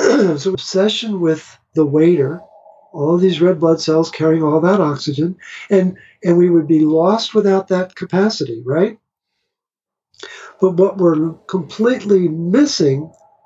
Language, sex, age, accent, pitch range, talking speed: English, male, 60-79, American, 150-195 Hz, 135 wpm